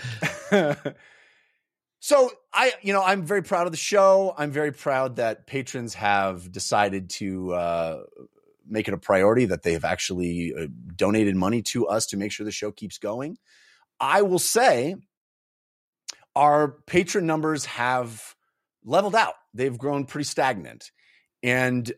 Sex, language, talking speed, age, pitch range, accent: male, English, 140 wpm, 30-49, 105-150 Hz, American